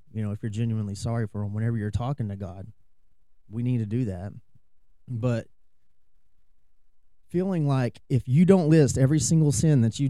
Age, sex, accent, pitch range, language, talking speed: 30-49, male, American, 100-130 Hz, English, 180 wpm